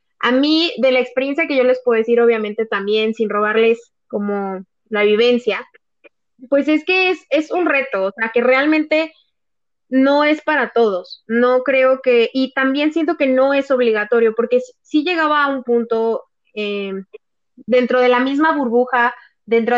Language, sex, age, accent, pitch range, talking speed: Spanish, female, 20-39, Mexican, 225-275 Hz, 170 wpm